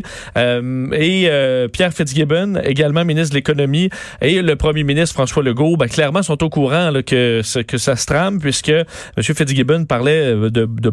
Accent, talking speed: Canadian, 175 wpm